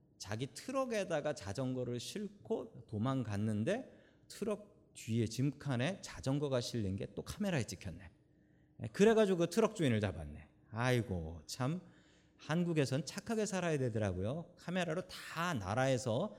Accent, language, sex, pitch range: native, Korean, male, 110-165 Hz